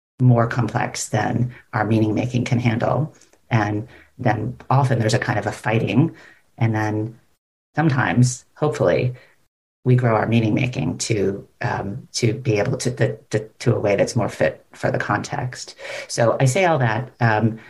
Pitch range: 115-130 Hz